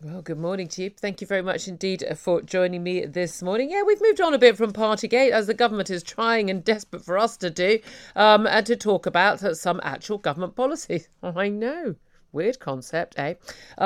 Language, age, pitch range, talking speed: English, 50-69, 155-200 Hz, 210 wpm